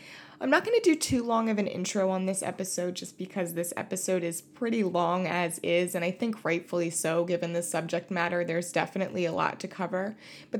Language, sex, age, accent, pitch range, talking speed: English, female, 20-39, American, 170-210 Hz, 215 wpm